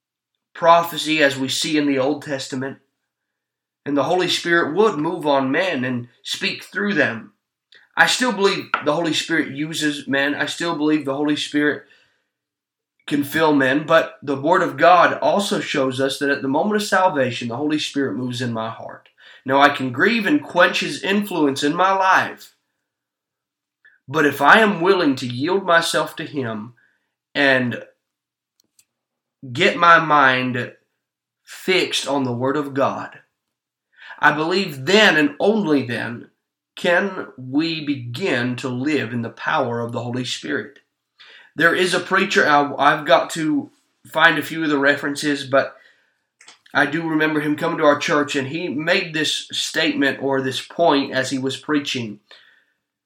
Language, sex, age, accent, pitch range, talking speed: English, male, 30-49, American, 135-165 Hz, 160 wpm